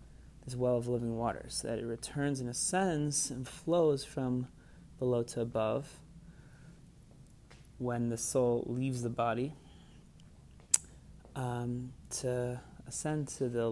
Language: English